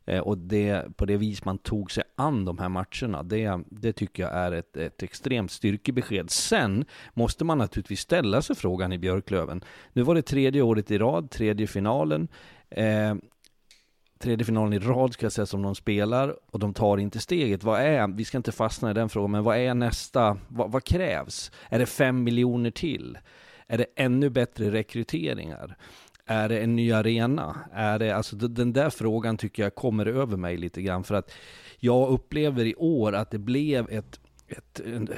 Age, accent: 30-49, native